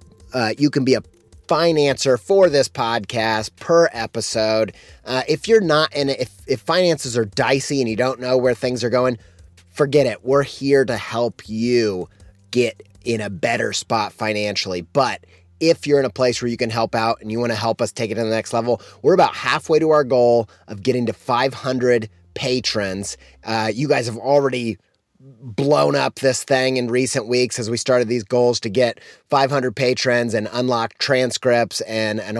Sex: male